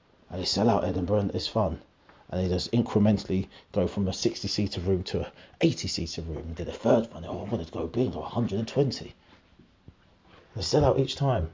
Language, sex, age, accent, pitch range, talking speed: English, male, 30-49, British, 90-110 Hz, 210 wpm